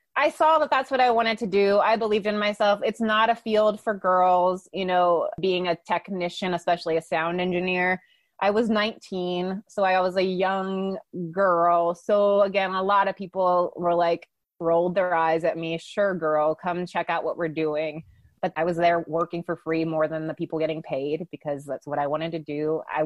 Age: 20-39